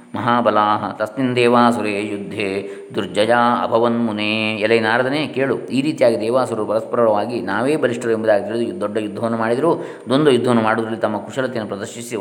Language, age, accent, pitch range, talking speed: Kannada, 20-39, native, 105-125 Hz, 125 wpm